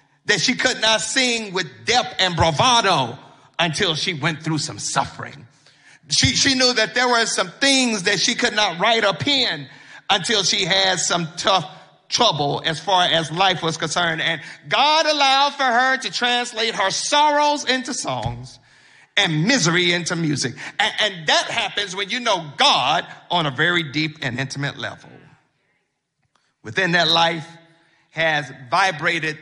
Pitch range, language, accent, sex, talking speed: 155-215 Hz, English, American, male, 155 wpm